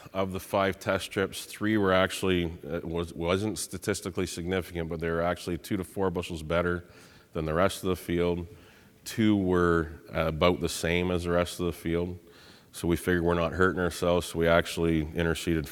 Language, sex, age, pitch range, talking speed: English, male, 30-49, 75-90 Hz, 190 wpm